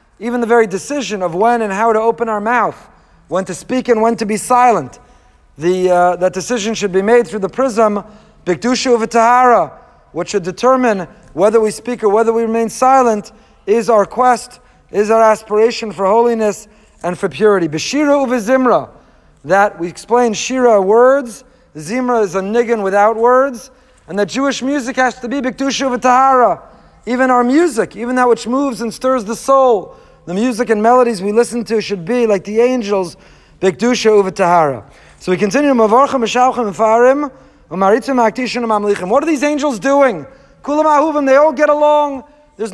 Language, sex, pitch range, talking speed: English, male, 215-265 Hz, 160 wpm